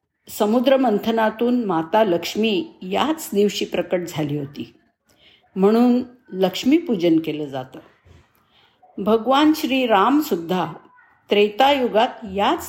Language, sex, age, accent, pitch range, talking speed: Marathi, female, 50-69, native, 180-255 Hz, 80 wpm